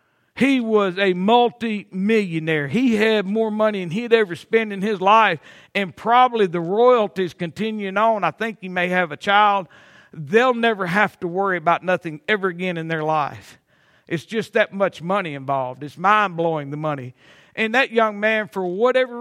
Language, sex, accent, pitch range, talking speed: English, male, American, 185-250 Hz, 175 wpm